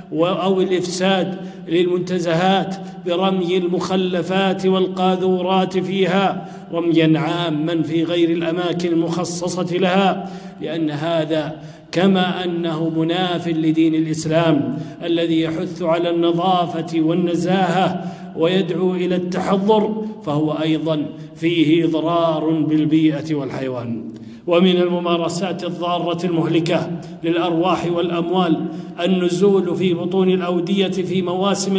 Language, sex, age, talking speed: Arabic, male, 50-69, 90 wpm